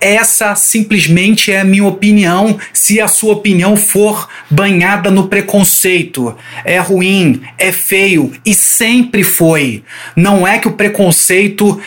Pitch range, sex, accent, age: 170-200 Hz, male, Brazilian, 30-49